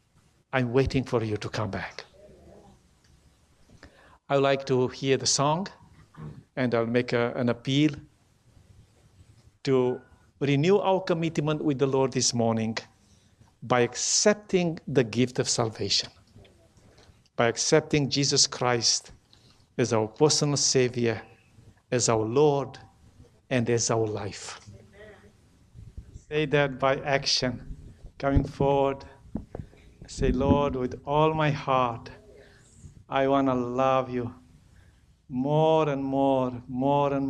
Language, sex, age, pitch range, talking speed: English, male, 60-79, 115-145 Hz, 115 wpm